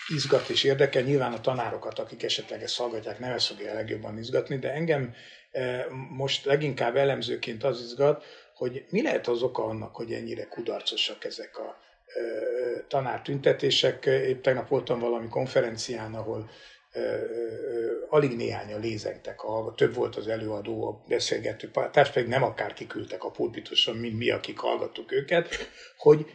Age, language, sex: 60-79, Hungarian, male